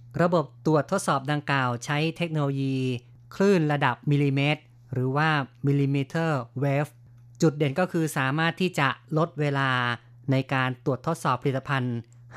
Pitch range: 125-155 Hz